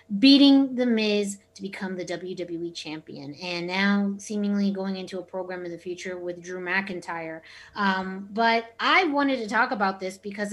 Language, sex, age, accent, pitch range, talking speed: English, female, 20-39, American, 185-225 Hz, 170 wpm